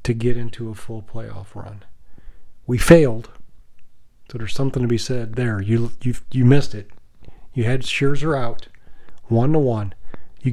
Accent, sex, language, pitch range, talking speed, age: American, male, English, 110-130 Hz, 155 wpm, 40-59